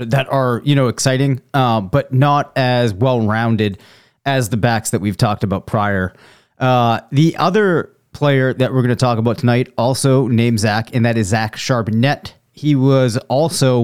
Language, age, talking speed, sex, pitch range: English, 30-49, 175 wpm, male, 120-145 Hz